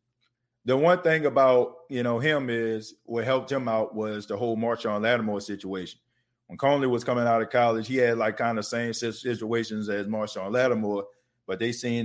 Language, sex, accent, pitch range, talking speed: English, male, American, 115-130 Hz, 190 wpm